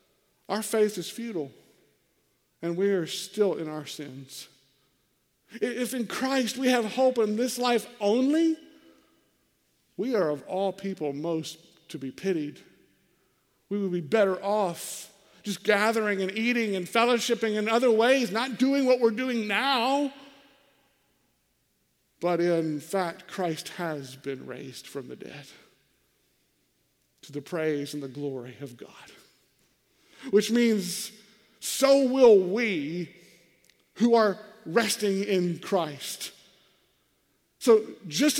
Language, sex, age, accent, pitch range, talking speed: English, male, 50-69, American, 160-225 Hz, 125 wpm